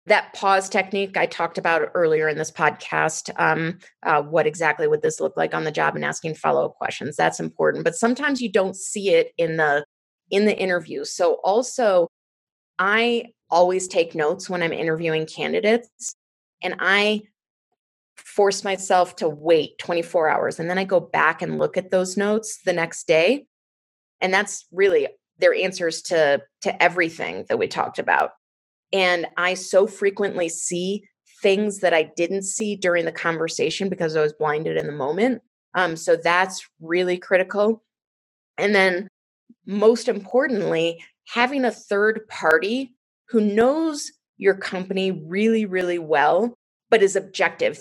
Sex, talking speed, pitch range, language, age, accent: female, 155 wpm, 170-220 Hz, English, 30-49, American